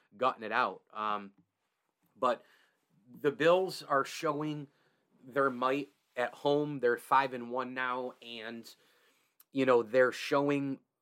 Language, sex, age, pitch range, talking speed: English, male, 30-49, 125-155 Hz, 125 wpm